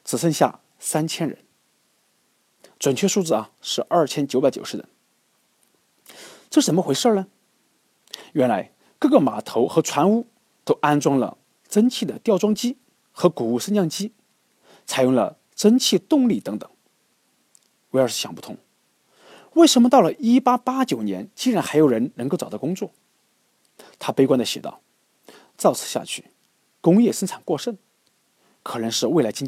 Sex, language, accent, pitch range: male, Chinese, native, 155-240 Hz